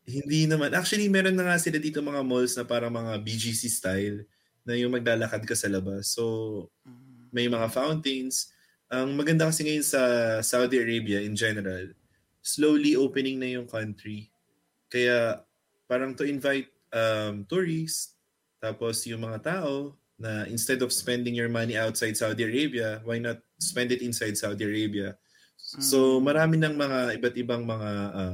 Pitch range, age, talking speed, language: 105-130 Hz, 20-39, 155 wpm, Filipino